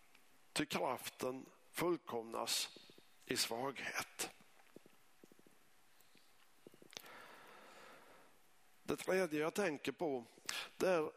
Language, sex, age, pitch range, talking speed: Swedish, male, 50-69, 125-170 Hz, 60 wpm